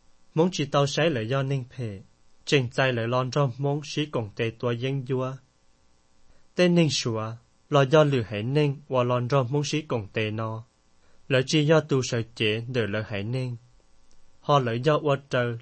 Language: Thai